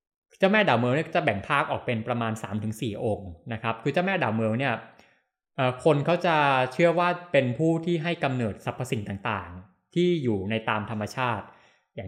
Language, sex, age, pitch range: Thai, male, 20-39, 110-145 Hz